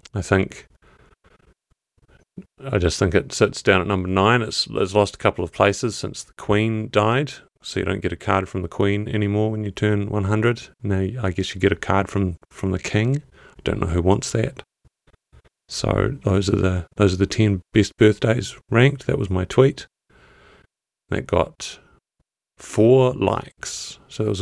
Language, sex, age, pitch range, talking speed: English, male, 30-49, 95-125 Hz, 185 wpm